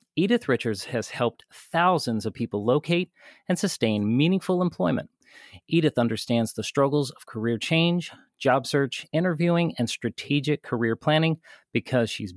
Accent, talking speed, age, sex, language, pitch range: American, 135 wpm, 40-59, male, English, 115-150 Hz